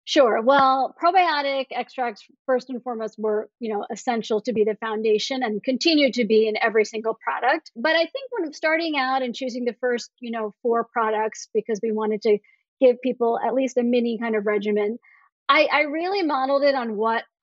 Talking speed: 195 wpm